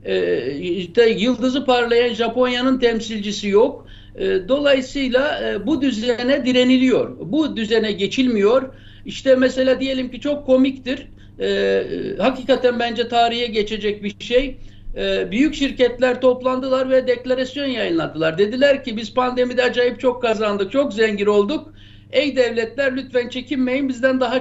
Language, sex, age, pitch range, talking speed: Turkish, male, 60-79, 220-260 Hz, 130 wpm